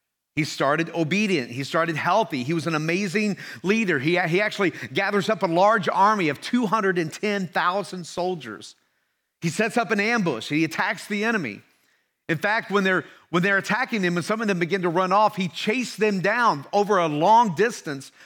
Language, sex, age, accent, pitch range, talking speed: English, male, 50-69, American, 145-195 Hz, 180 wpm